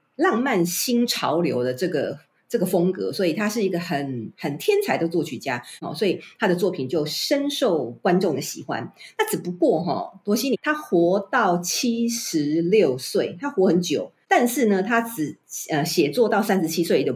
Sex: female